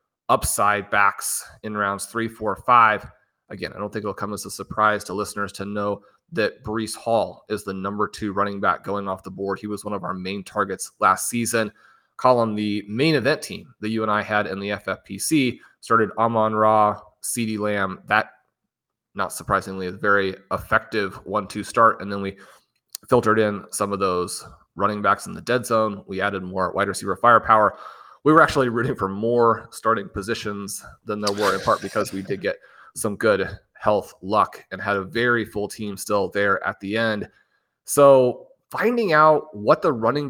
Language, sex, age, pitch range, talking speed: English, male, 30-49, 100-120 Hz, 190 wpm